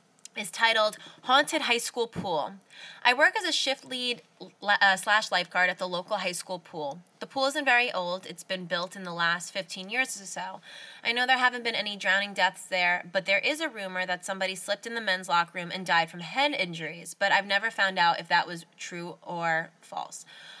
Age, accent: 20-39, American